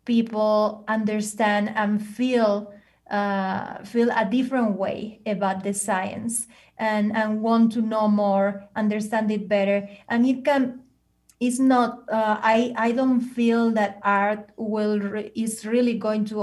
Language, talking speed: English, 140 wpm